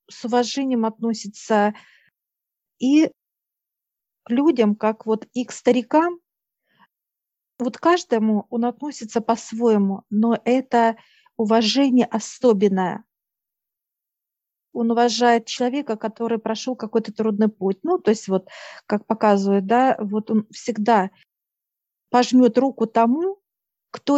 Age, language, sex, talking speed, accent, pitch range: 40-59, Russian, female, 105 wpm, native, 210-245 Hz